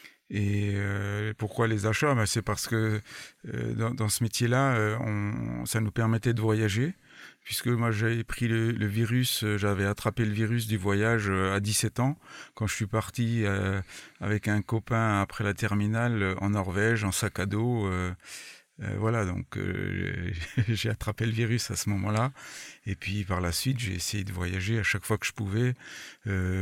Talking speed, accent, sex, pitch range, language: 190 wpm, French, male, 100-115 Hz, French